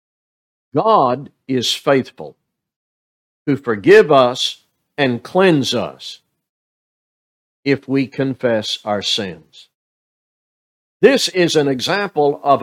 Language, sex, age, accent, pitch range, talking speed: English, male, 60-79, American, 130-165 Hz, 90 wpm